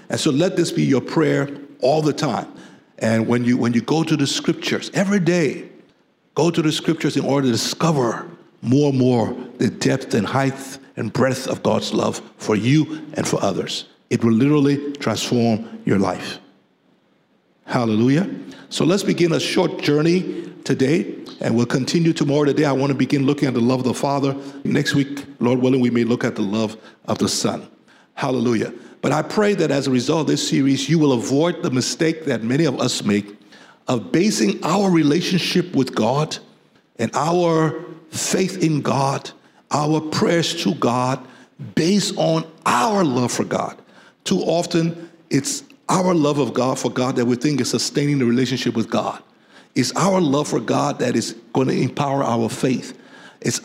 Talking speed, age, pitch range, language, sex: 180 wpm, 60-79, 125-160 Hz, English, male